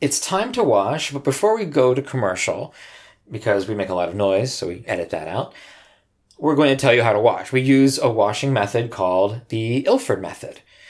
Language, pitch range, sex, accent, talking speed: English, 105-145 Hz, male, American, 215 wpm